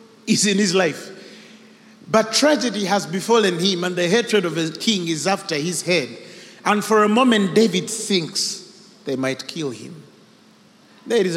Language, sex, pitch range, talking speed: English, male, 180-230 Hz, 160 wpm